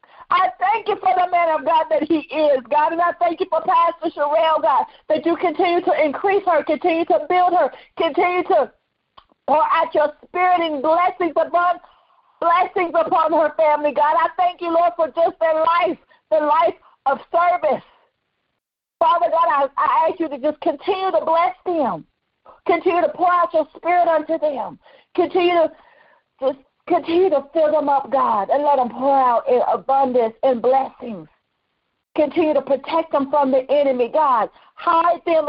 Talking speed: 175 wpm